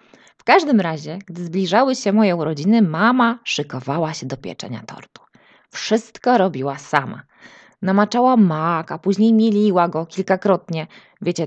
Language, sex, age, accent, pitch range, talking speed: Polish, female, 20-39, native, 180-235 Hz, 125 wpm